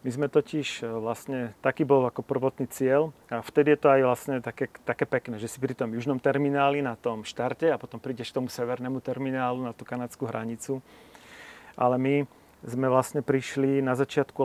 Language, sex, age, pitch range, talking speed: Slovak, male, 40-59, 120-140 Hz, 185 wpm